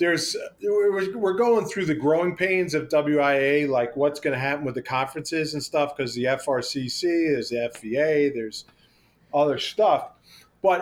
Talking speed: 160 wpm